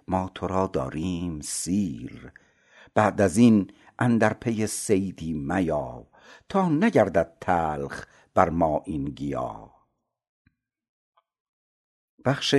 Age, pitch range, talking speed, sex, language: 60-79, 90-110 Hz, 95 wpm, male, Persian